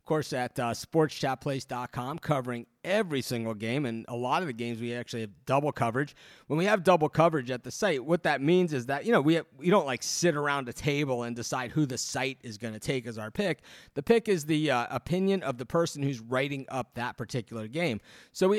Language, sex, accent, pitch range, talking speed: English, male, American, 120-155 Hz, 235 wpm